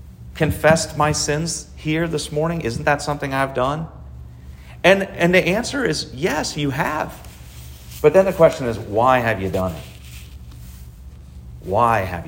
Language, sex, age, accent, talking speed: English, male, 40-59, American, 150 wpm